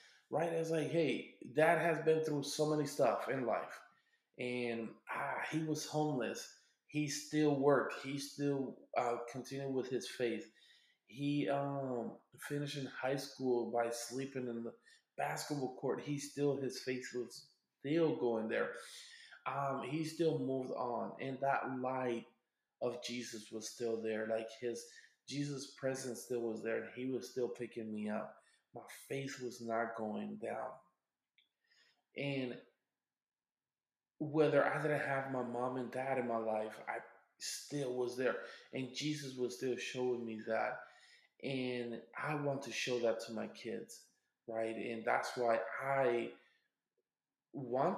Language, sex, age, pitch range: English, male, 20-39, 120-150 Hz